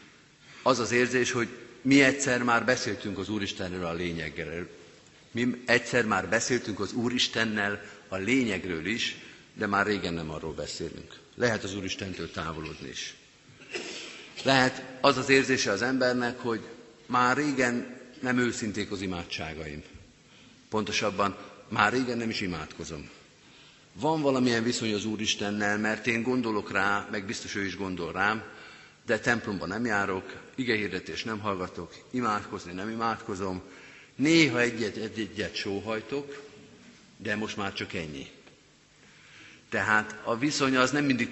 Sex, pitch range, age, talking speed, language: male, 100-125 Hz, 50-69, 130 wpm, Hungarian